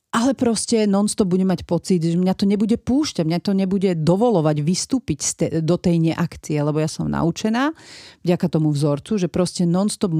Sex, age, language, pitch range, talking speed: female, 40-59, Slovak, 160-195 Hz, 190 wpm